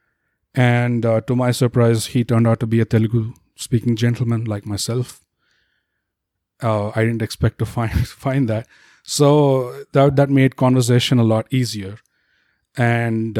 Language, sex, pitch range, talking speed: English, male, 110-130 Hz, 150 wpm